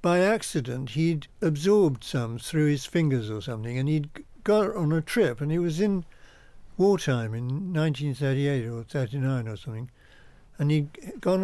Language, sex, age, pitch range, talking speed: English, male, 60-79, 130-165 Hz, 155 wpm